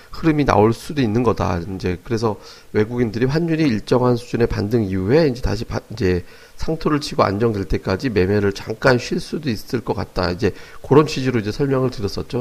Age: 40-59